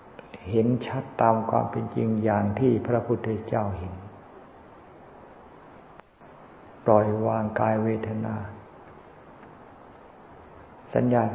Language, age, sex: Thai, 60-79, male